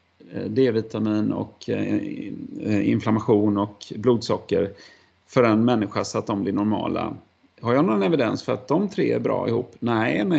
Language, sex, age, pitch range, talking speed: Swedish, male, 30-49, 110-135 Hz, 150 wpm